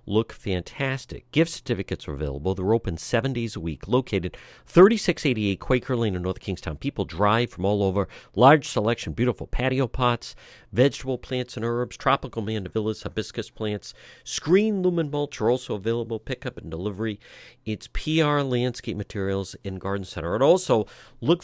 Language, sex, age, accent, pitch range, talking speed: English, male, 50-69, American, 110-145 Hz, 155 wpm